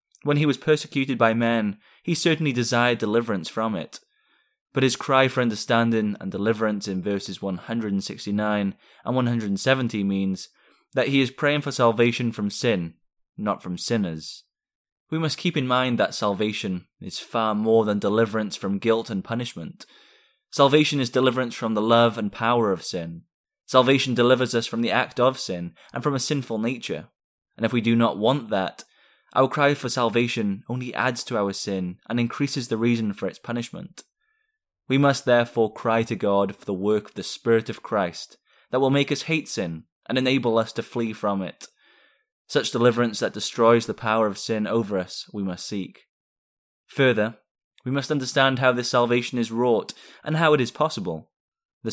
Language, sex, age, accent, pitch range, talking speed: English, male, 20-39, British, 105-130 Hz, 175 wpm